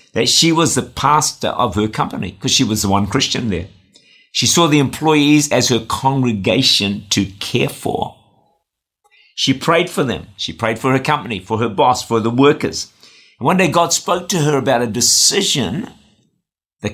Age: 50-69